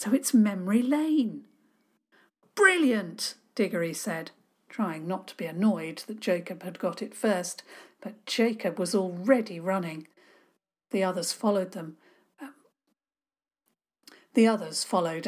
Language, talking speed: English, 120 wpm